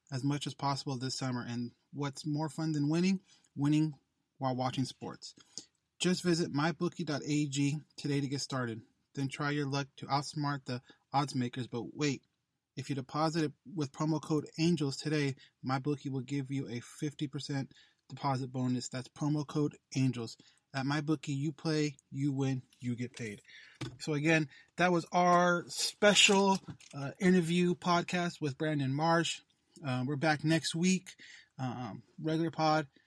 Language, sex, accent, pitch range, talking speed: English, male, American, 135-155 Hz, 150 wpm